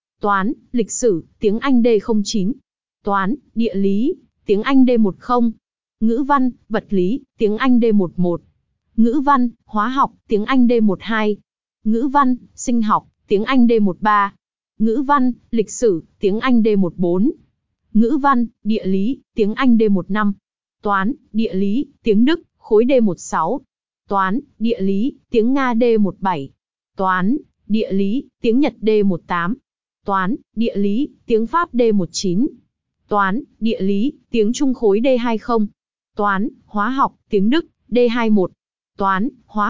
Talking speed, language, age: 145 wpm, Vietnamese, 20-39